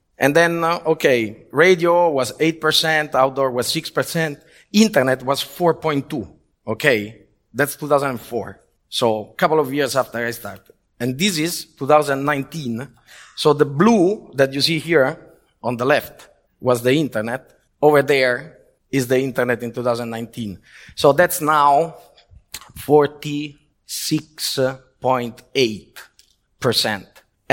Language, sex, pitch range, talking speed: Croatian, male, 125-160 Hz, 110 wpm